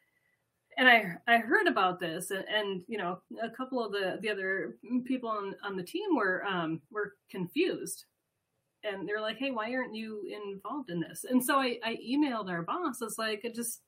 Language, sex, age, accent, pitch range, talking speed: English, female, 30-49, American, 190-255 Hz, 210 wpm